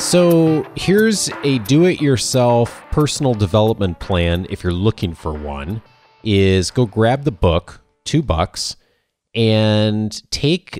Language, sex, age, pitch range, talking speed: English, male, 30-49, 85-110 Hz, 115 wpm